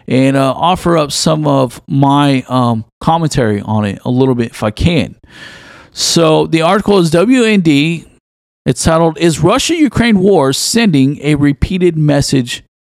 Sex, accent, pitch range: male, American, 135-195 Hz